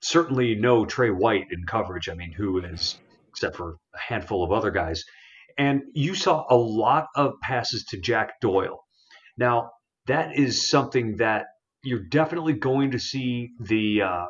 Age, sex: 40-59, male